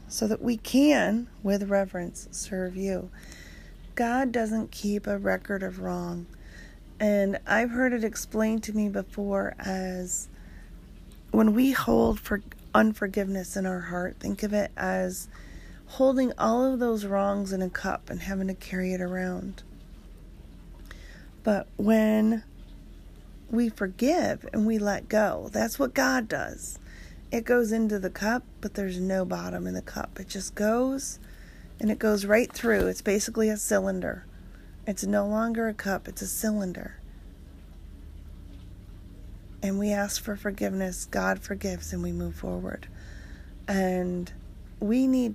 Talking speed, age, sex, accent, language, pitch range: 145 wpm, 40-59, female, American, English, 185-220 Hz